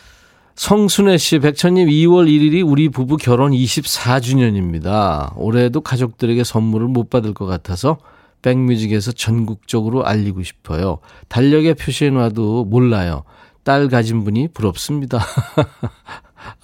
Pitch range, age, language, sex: 105-145 Hz, 40-59, Korean, male